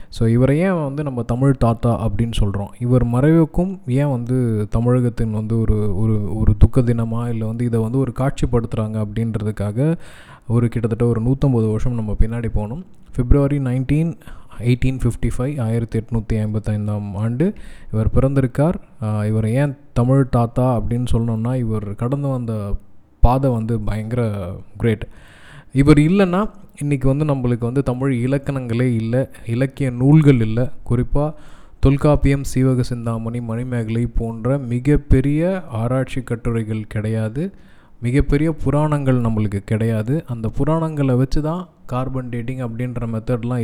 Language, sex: Tamil, male